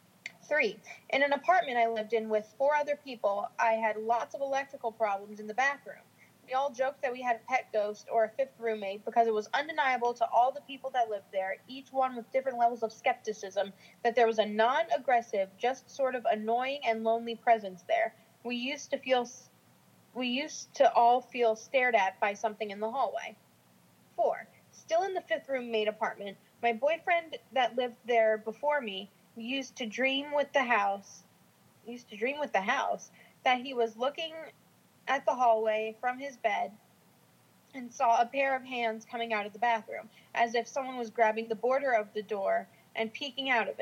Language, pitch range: English, 220-270 Hz